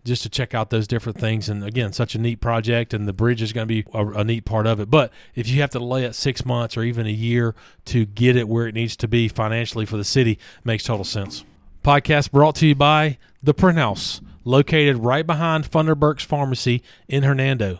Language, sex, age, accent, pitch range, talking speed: English, male, 40-59, American, 120-160 Hz, 235 wpm